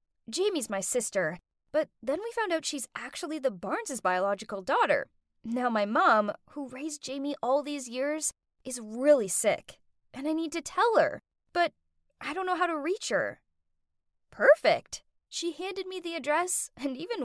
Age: 10-29